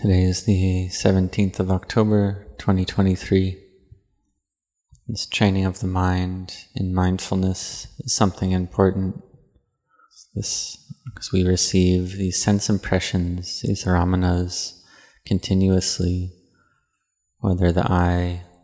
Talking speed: 95 wpm